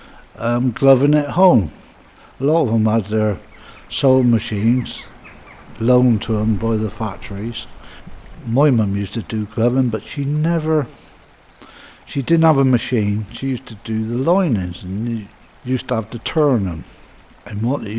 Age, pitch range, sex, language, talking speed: 60-79, 105-140 Hz, male, English, 165 wpm